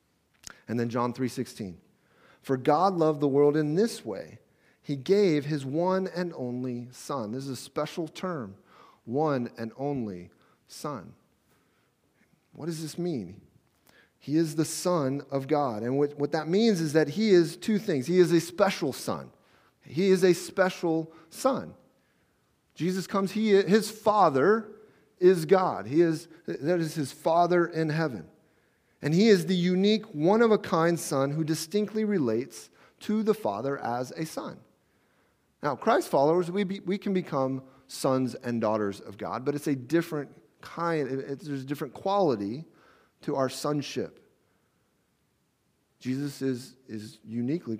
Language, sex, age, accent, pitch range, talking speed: English, male, 40-59, American, 140-185 Hz, 150 wpm